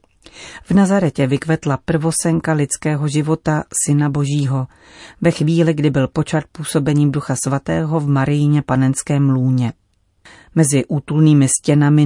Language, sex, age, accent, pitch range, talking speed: Czech, female, 40-59, native, 140-165 Hz, 115 wpm